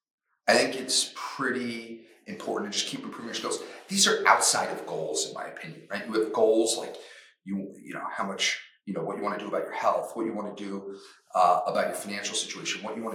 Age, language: 40-59, English